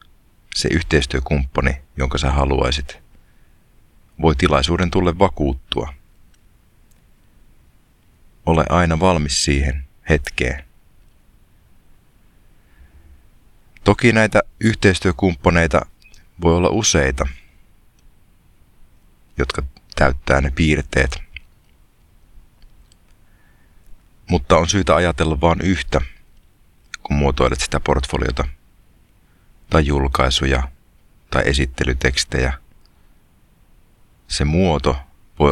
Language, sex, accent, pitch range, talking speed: Finnish, male, native, 65-85 Hz, 70 wpm